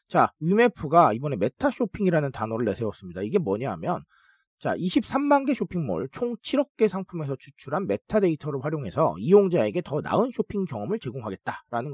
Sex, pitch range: male, 150-235 Hz